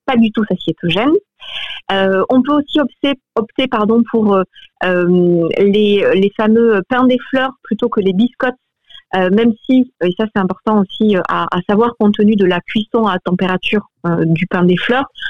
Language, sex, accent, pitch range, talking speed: French, female, French, 185-230 Hz, 180 wpm